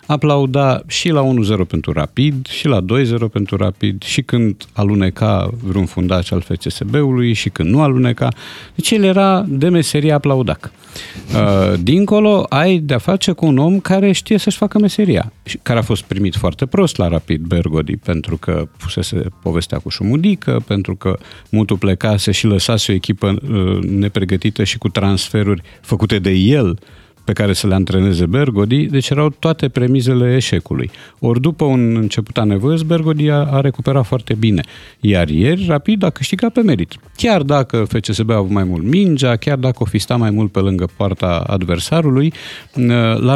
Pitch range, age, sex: 100-145 Hz, 50-69, male